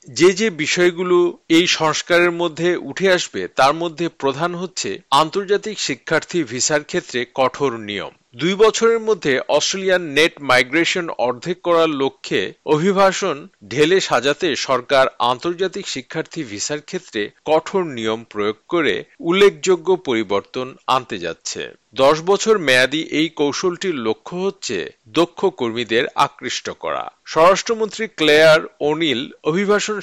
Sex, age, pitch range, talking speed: male, 50-69, 140-185 Hz, 115 wpm